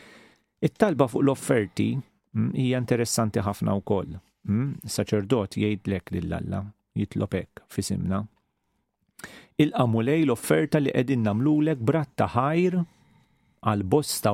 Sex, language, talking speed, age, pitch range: male, English, 105 wpm, 40-59, 100-130 Hz